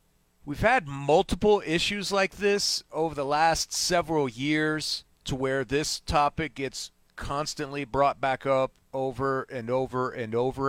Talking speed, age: 140 wpm, 40-59